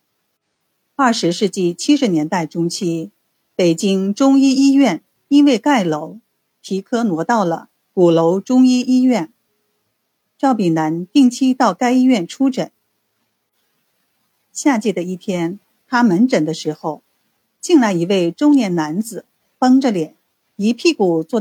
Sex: female